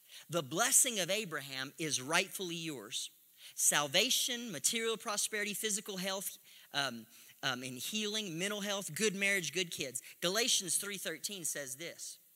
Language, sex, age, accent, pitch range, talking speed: English, male, 40-59, American, 175-230 Hz, 125 wpm